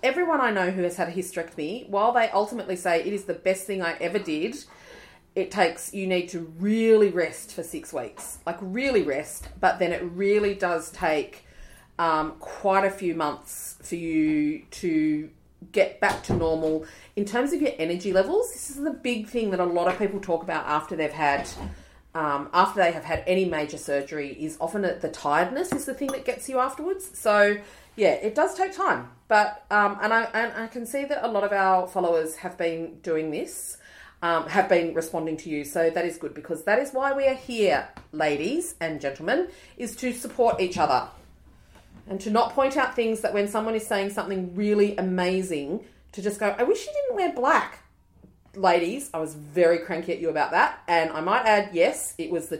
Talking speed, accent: 205 wpm, Australian